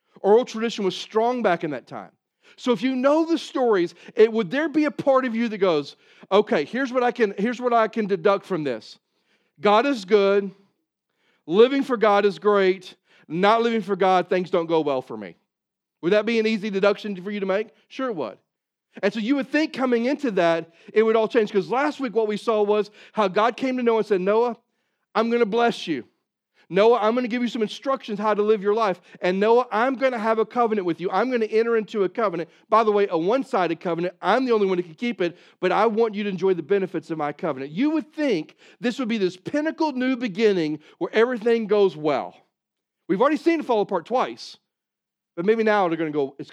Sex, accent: male, American